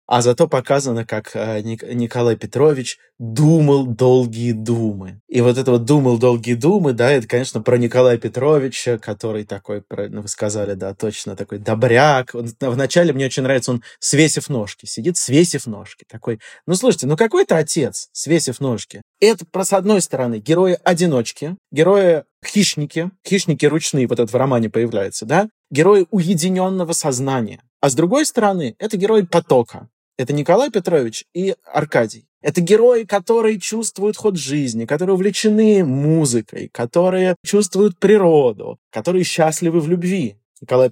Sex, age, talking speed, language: male, 20-39, 140 wpm, Russian